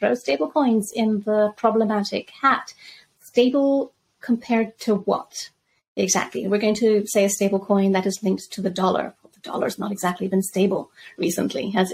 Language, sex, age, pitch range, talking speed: English, female, 30-49, 180-210 Hz, 170 wpm